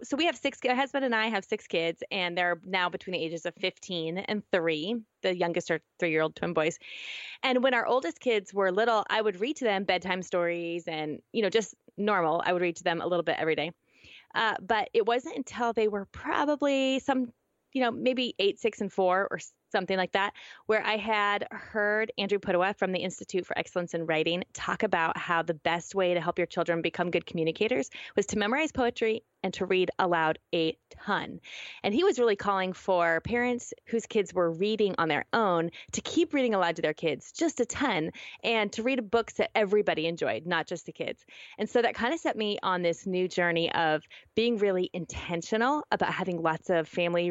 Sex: female